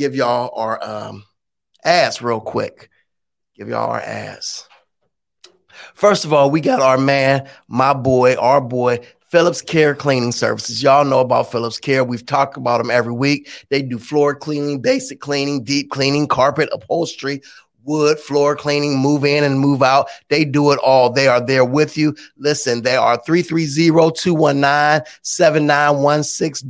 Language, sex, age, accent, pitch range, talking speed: English, male, 30-49, American, 130-150 Hz, 155 wpm